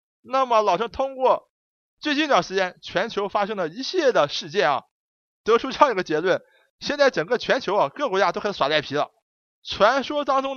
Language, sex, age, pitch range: Chinese, male, 20-39, 195-275 Hz